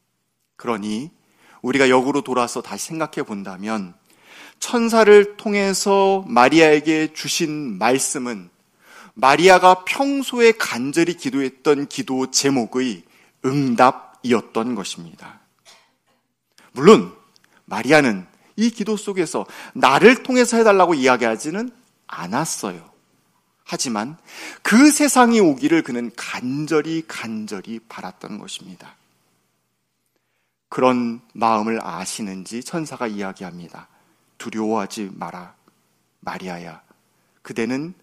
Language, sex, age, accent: Korean, male, 40-59, native